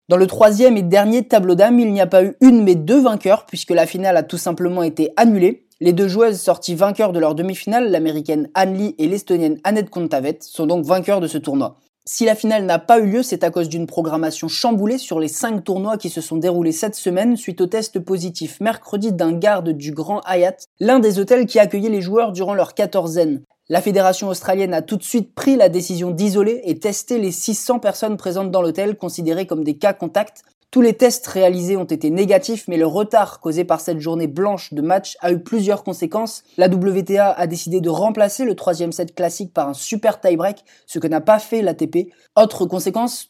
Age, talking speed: 20-39, 215 wpm